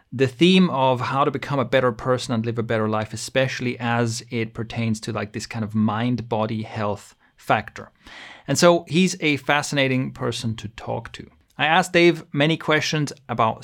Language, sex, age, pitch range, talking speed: English, male, 30-49, 115-145 Hz, 180 wpm